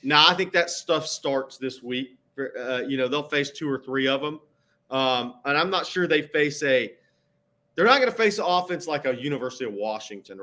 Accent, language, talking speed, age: American, English, 225 wpm, 40-59